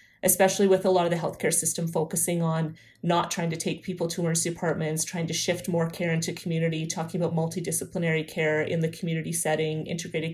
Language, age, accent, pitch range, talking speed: English, 30-49, American, 160-180 Hz, 195 wpm